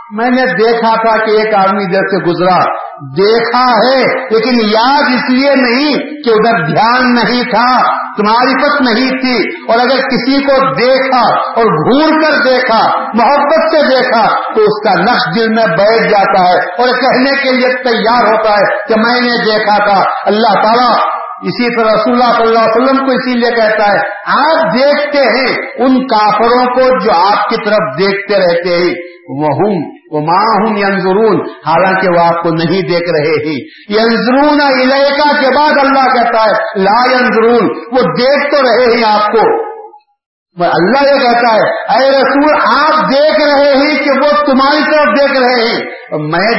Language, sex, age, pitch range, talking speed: Urdu, male, 50-69, 205-270 Hz, 170 wpm